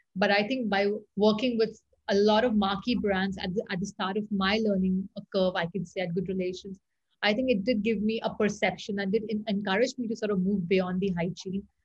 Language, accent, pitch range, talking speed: English, Indian, 190-215 Hz, 225 wpm